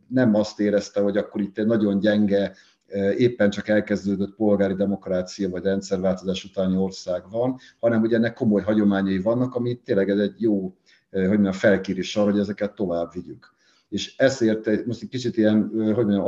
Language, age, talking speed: Hungarian, 50-69, 150 wpm